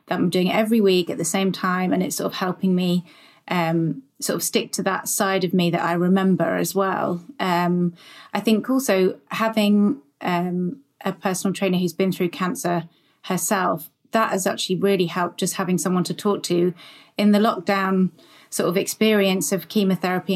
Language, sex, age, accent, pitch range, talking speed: English, female, 30-49, British, 180-200 Hz, 185 wpm